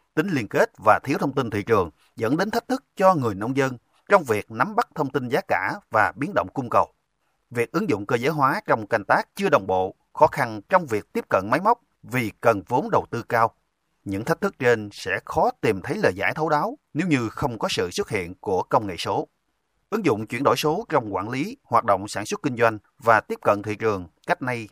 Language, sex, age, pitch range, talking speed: Vietnamese, male, 30-49, 105-135 Hz, 245 wpm